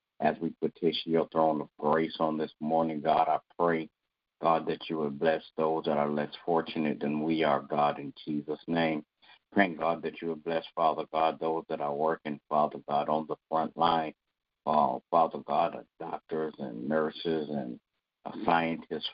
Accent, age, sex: American, 50-69, male